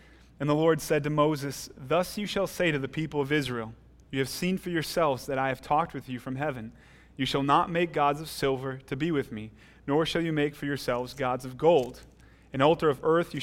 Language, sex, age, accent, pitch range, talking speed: English, male, 30-49, American, 125-150 Hz, 235 wpm